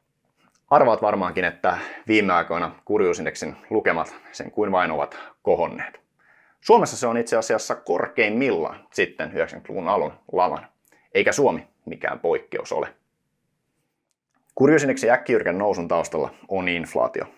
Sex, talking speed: male, 110 wpm